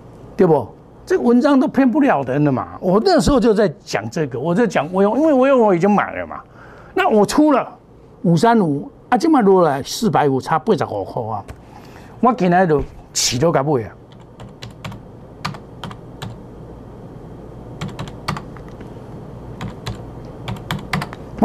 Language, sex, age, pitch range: Chinese, male, 60-79, 145-230 Hz